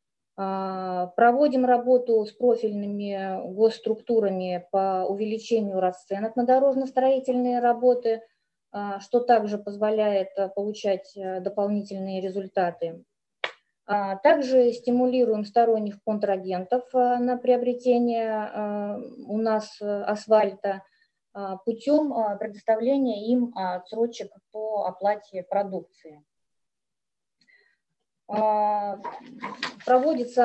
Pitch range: 200-245 Hz